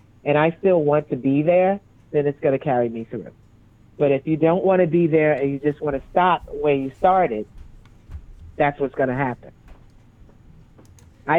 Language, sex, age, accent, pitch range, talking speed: English, female, 40-59, American, 125-170 Hz, 175 wpm